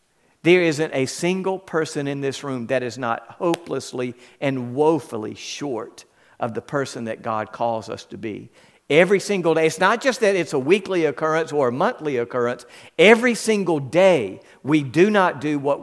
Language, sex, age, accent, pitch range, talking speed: English, male, 50-69, American, 135-175 Hz, 180 wpm